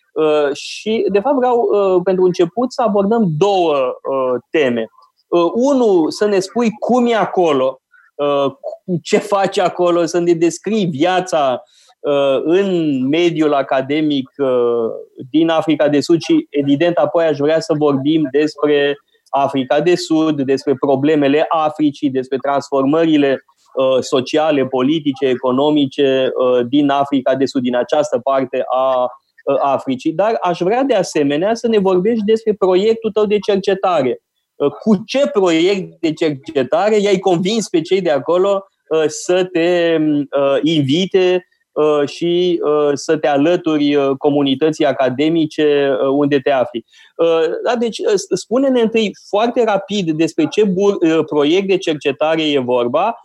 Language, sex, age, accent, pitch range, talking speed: Romanian, male, 20-39, native, 145-210 Hz, 120 wpm